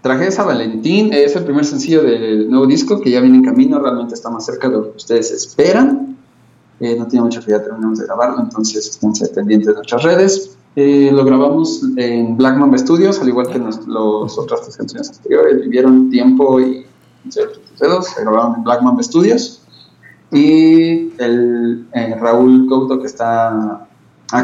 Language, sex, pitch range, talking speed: Spanish, male, 115-145 Hz, 175 wpm